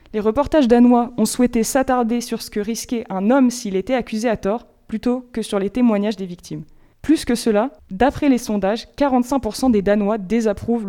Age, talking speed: 20-39, 185 wpm